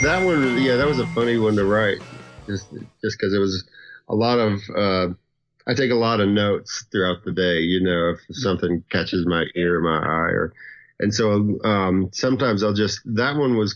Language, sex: English, male